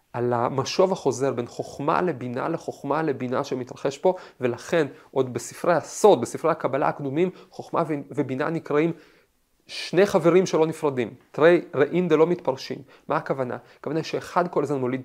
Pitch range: 135-185 Hz